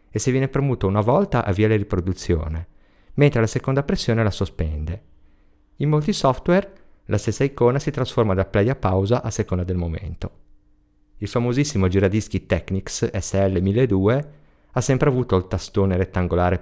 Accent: native